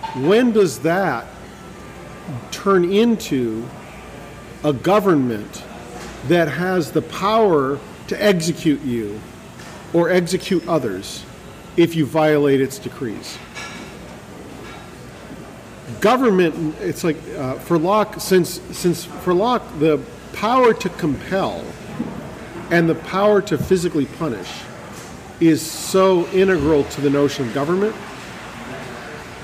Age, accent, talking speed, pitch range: 50-69, American, 100 wpm, 150-190 Hz